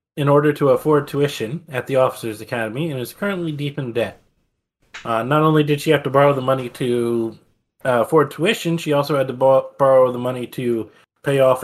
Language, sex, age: English, male, 20-39